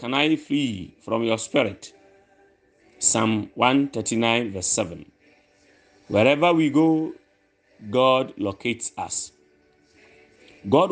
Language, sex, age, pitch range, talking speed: English, male, 30-49, 110-165 Hz, 95 wpm